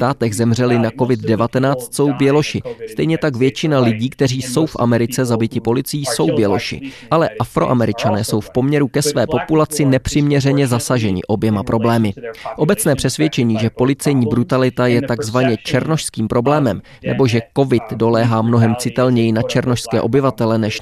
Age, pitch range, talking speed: 20-39, 115-145 Hz, 140 wpm